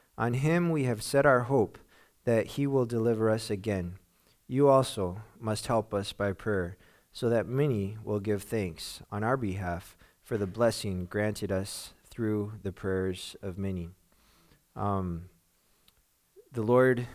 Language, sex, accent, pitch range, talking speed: English, male, American, 105-135 Hz, 145 wpm